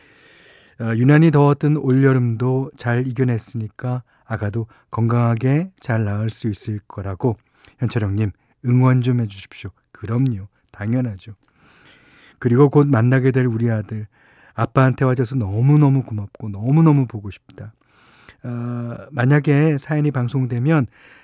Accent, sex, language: native, male, Korean